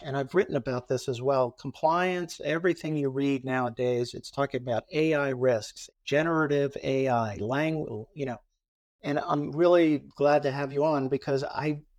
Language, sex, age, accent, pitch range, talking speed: English, male, 50-69, American, 130-155 Hz, 160 wpm